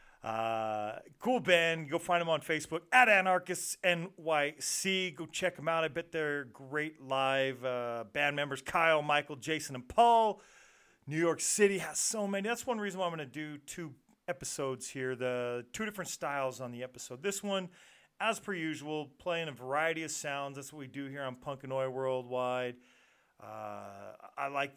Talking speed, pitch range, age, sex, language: 180 wpm, 135-175 Hz, 40-59, male, English